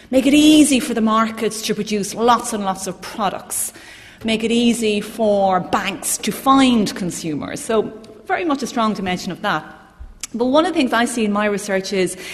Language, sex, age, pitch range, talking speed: English, female, 30-49, 190-255 Hz, 195 wpm